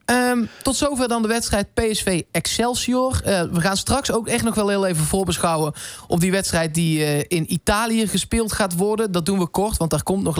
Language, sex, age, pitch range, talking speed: Dutch, male, 20-39, 165-225 Hz, 210 wpm